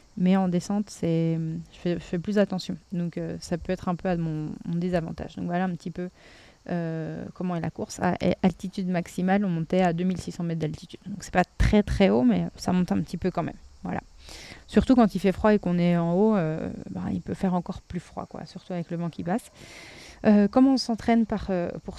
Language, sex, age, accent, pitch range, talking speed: French, female, 20-39, French, 175-200 Hz, 245 wpm